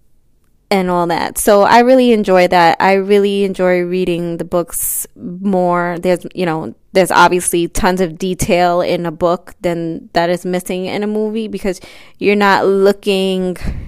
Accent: American